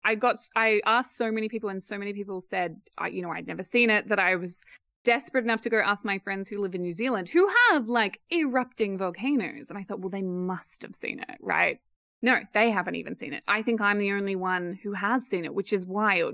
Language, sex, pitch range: English, female, 185-225 Hz